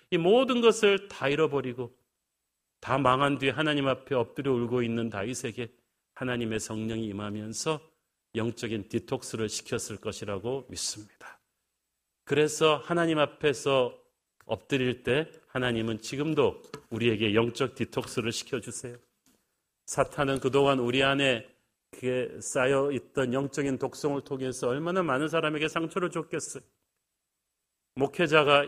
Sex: male